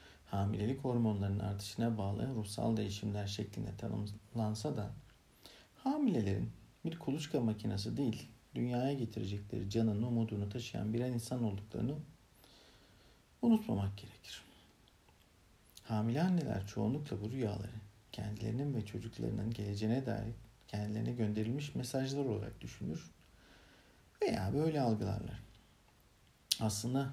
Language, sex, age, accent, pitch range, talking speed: Turkish, male, 50-69, native, 105-125 Hz, 95 wpm